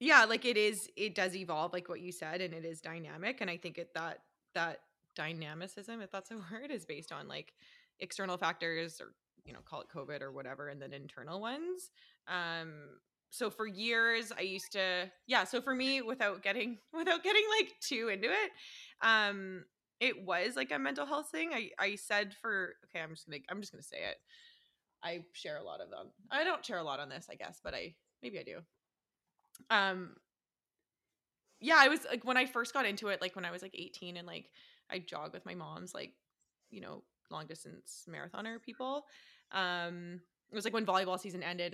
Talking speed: 205 wpm